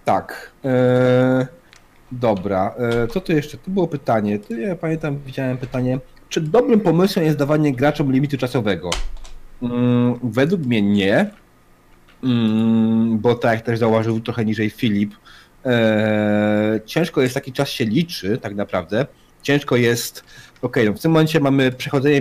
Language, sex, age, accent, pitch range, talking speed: Polish, male, 30-49, native, 110-130 Hz, 145 wpm